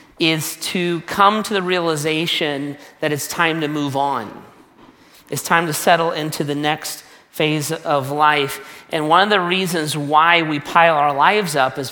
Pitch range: 135-165 Hz